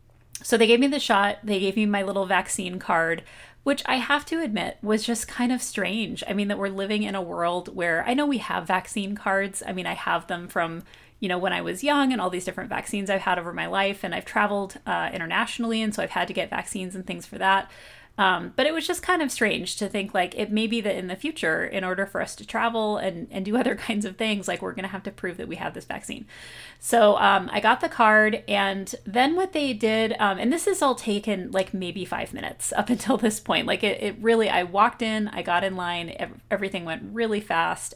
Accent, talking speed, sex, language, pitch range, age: American, 250 wpm, female, English, 185-225 Hz, 30-49